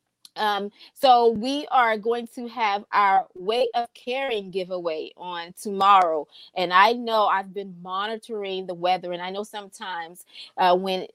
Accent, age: American, 20-39